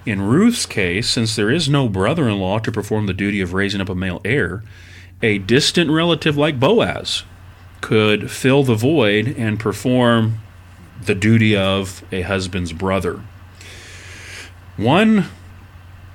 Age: 30-49